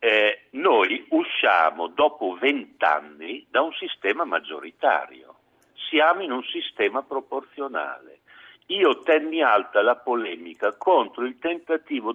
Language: Italian